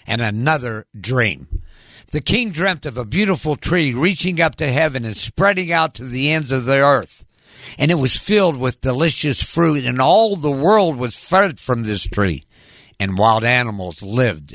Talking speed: 175 wpm